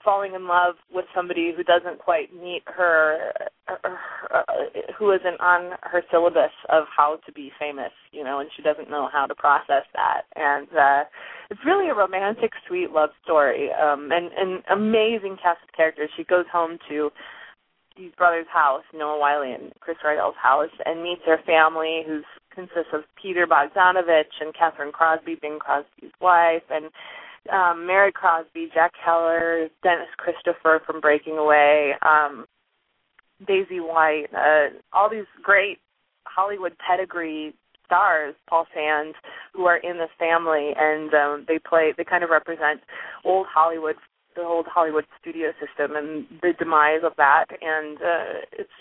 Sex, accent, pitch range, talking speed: female, American, 155-180 Hz, 155 wpm